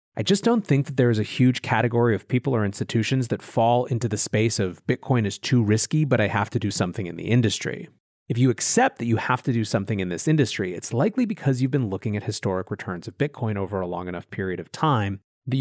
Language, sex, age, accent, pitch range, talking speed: English, male, 30-49, American, 105-140 Hz, 245 wpm